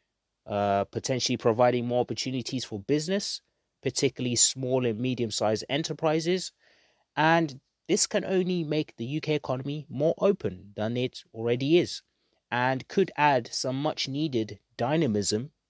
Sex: male